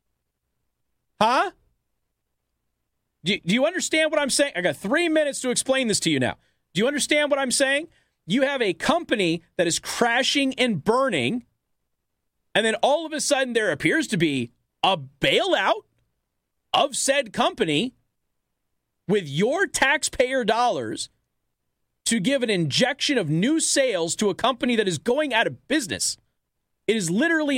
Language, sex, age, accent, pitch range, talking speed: English, male, 40-59, American, 190-290 Hz, 150 wpm